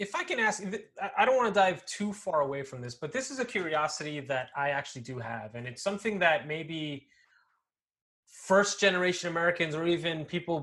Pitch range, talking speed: 140-175 Hz, 200 wpm